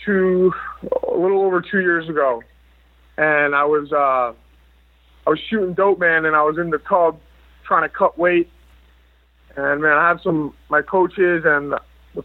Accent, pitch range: American, 130-175 Hz